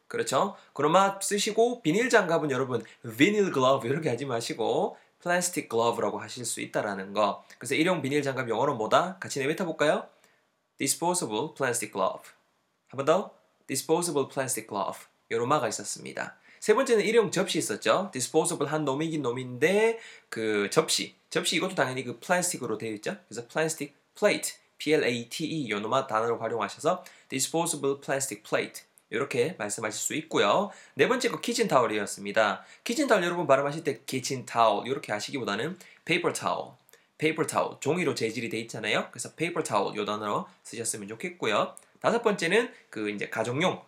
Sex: male